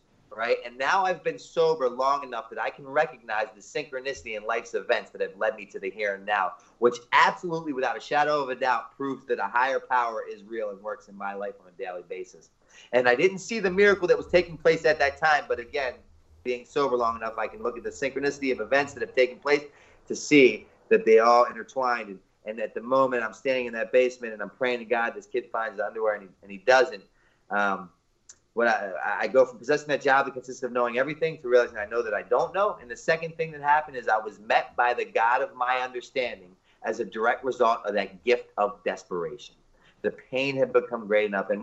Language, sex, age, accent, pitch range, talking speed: English, male, 30-49, American, 115-155 Hz, 240 wpm